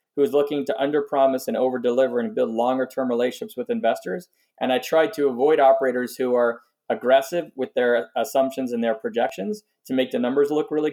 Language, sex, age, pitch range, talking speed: English, male, 20-39, 120-160 Hz, 190 wpm